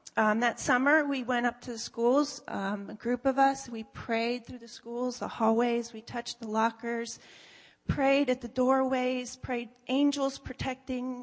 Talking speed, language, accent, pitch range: 170 wpm, English, American, 215-250 Hz